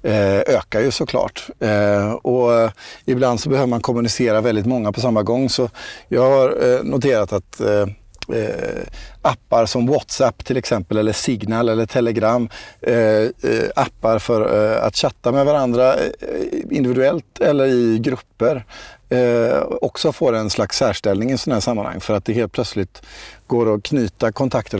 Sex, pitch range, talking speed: male, 105-130 Hz, 135 wpm